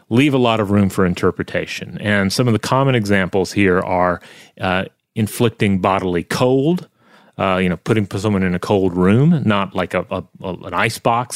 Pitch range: 100-125 Hz